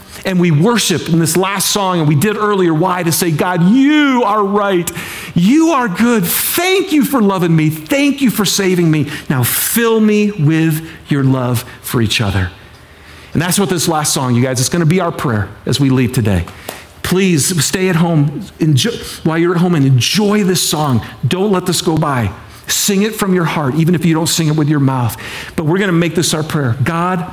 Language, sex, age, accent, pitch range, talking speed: English, male, 50-69, American, 110-180 Hz, 210 wpm